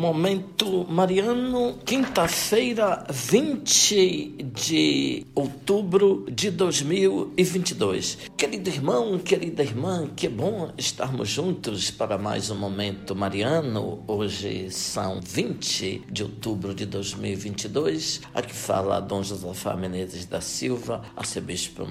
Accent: Brazilian